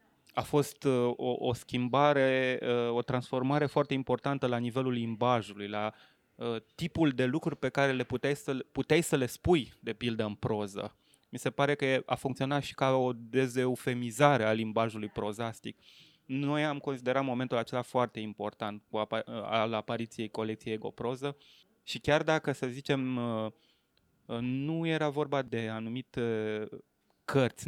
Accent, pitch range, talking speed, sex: native, 110-135 Hz, 145 wpm, male